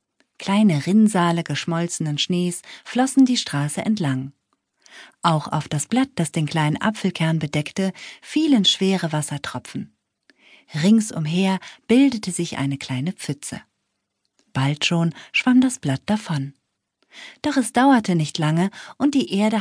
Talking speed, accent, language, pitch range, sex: 120 wpm, German, German, 150-210 Hz, female